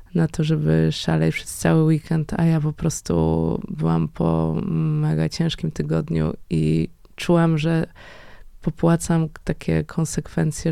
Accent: native